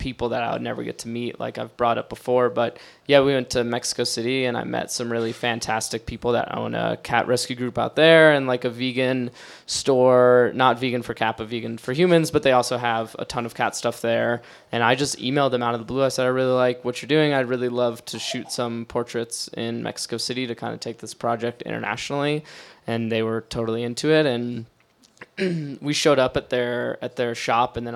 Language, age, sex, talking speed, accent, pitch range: English, 10-29, male, 235 wpm, American, 120-135 Hz